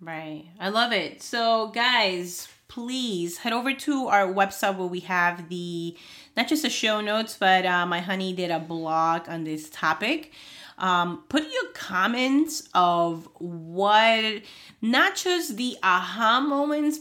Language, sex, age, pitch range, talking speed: English, female, 30-49, 180-240 Hz, 150 wpm